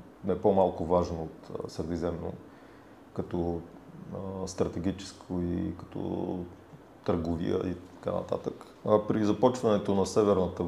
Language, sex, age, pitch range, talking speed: Bulgarian, male, 30-49, 85-100 Hz, 100 wpm